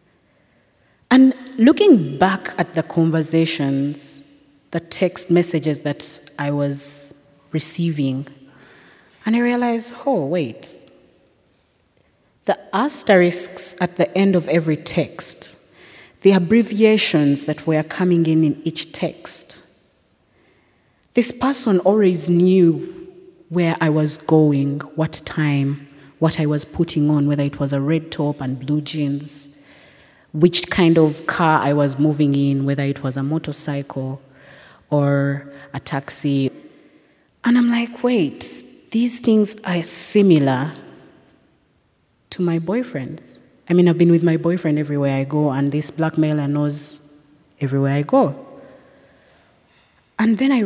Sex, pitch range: female, 145-180 Hz